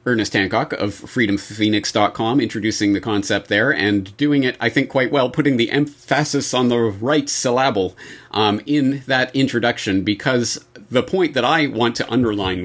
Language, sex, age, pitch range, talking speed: English, male, 40-59, 100-130 Hz, 160 wpm